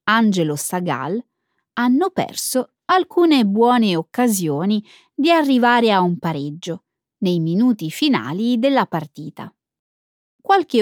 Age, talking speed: 20-39, 100 wpm